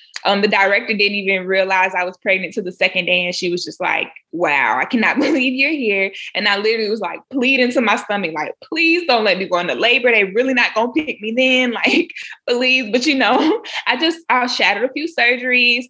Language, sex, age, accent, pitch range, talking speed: English, female, 20-39, American, 185-245 Hz, 230 wpm